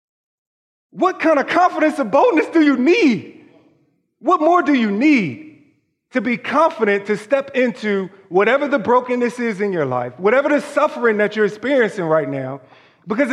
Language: English